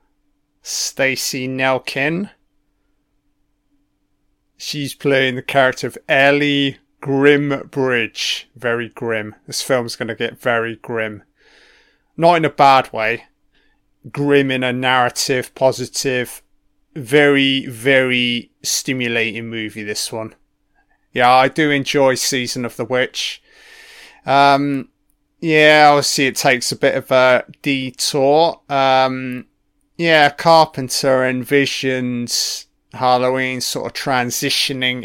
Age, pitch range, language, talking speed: 30-49, 120-145 Hz, English, 105 wpm